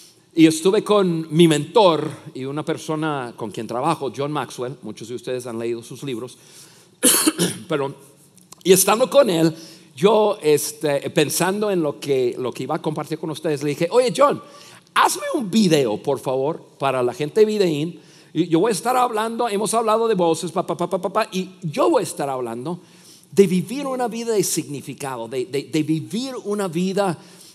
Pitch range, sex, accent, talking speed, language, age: 145-185 Hz, male, Mexican, 185 wpm, Spanish, 50-69